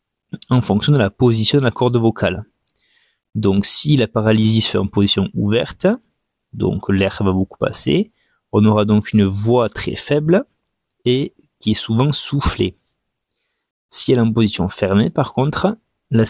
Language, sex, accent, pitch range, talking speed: French, male, French, 100-120 Hz, 160 wpm